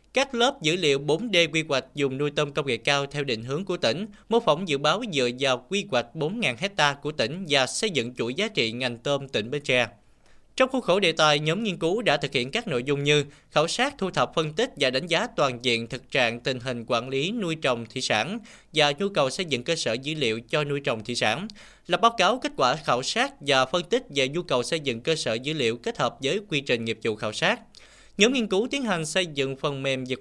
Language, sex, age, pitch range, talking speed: Vietnamese, male, 20-39, 140-190 Hz, 255 wpm